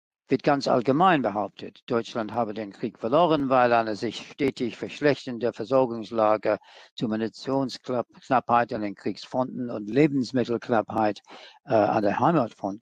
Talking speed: 120 wpm